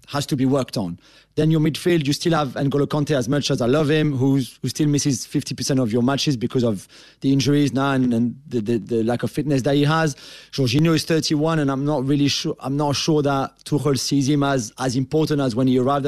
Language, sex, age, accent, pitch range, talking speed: English, male, 30-49, French, 135-160 Hz, 245 wpm